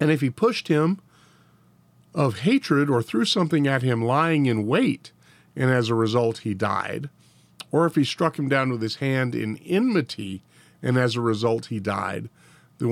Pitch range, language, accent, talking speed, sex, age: 100-140 Hz, English, American, 180 wpm, male, 50-69